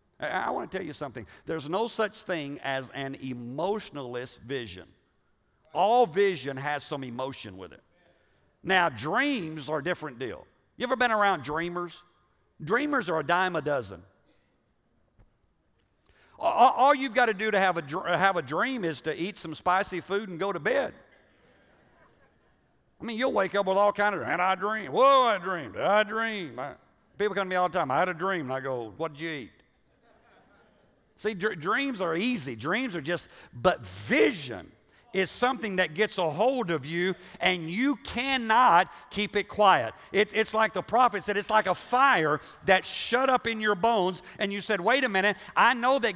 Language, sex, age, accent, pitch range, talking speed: English, male, 50-69, American, 165-215 Hz, 190 wpm